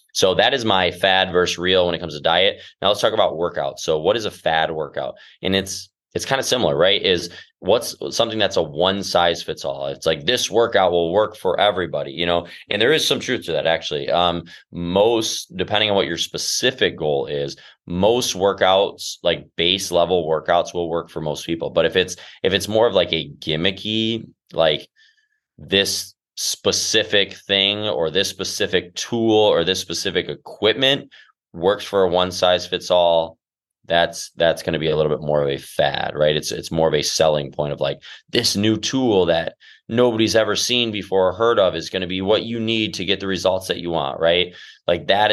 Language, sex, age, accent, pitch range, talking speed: English, male, 20-39, American, 85-110 Hz, 205 wpm